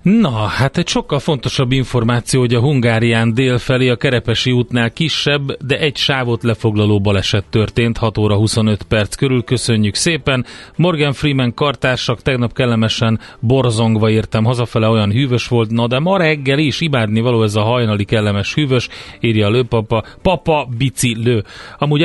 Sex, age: male, 30-49